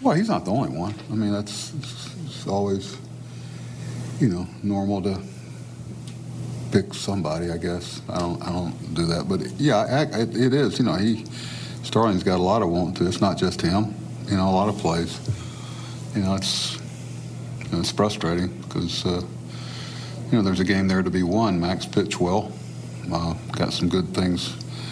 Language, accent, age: English, American, 60-79